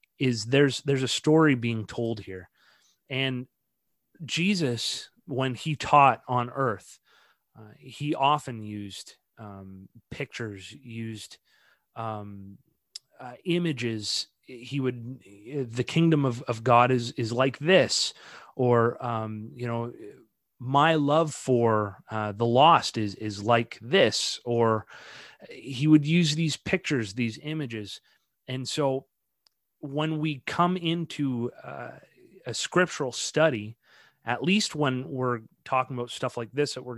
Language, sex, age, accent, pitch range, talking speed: English, male, 30-49, American, 115-145 Hz, 130 wpm